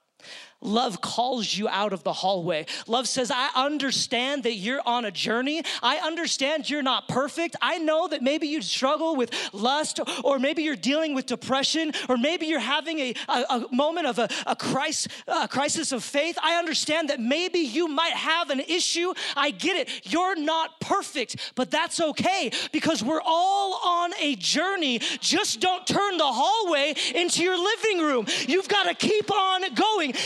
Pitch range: 260-375 Hz